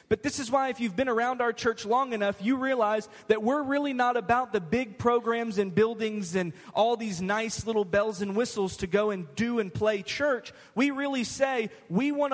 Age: 20-39